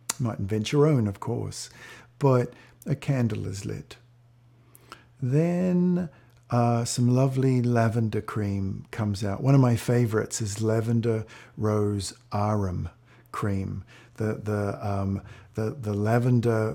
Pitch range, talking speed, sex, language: 105-125 Hz, 120 wpm, male, English